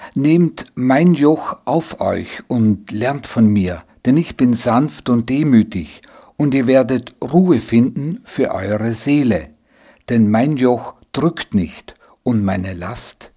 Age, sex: 60-79, male